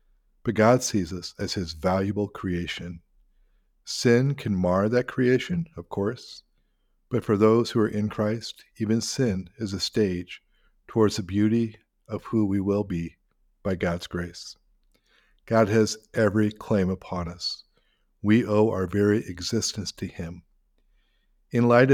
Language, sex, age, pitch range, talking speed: English, male, 50-69, 95-115 Hz, 145 wpm